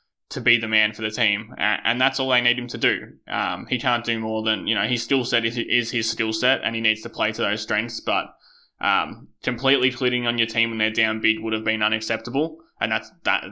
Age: 20-39